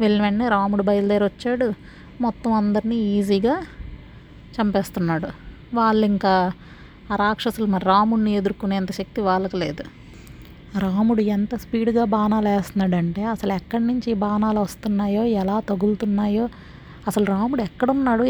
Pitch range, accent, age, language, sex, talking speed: 185-220 Hz, native, 30-49, Telugu, female, 110 wpm